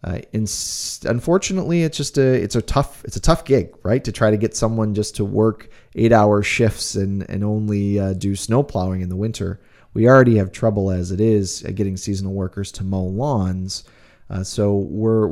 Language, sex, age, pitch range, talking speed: English, male, 30-49, 95-115 Hz, 200 wpm